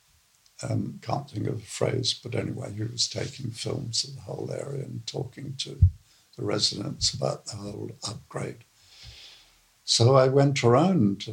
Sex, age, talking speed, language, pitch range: male, 60-79, 155 wpm, English, 110-130 Hz